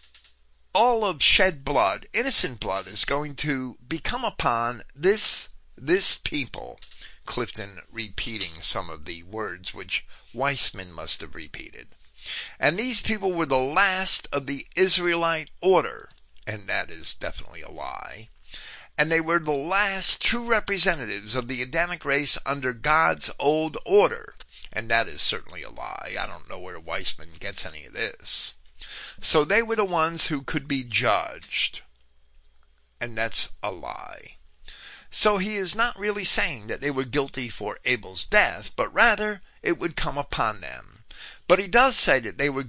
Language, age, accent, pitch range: English, 50-69, American, 120-185 Hz